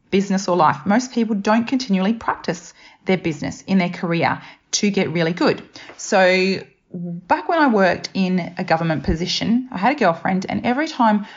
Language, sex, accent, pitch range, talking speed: English, female, Australian, 175-235 Hz, 175 wpm